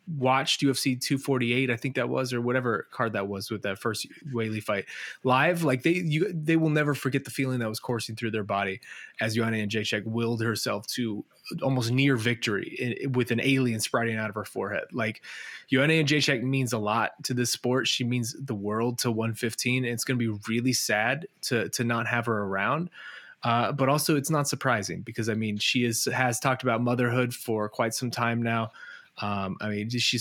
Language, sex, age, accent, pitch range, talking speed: English, male, 20-39, American, 110-130 Hz, 210 wpm